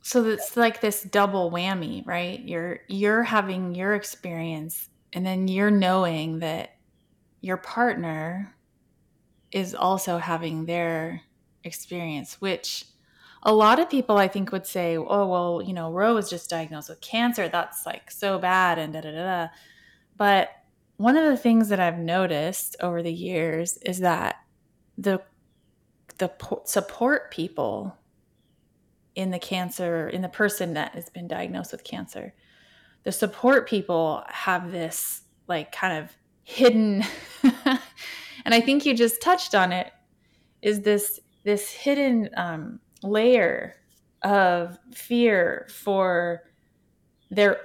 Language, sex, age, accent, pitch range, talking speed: English, female, 20-39, American, 175-220 Hz, 135 wpm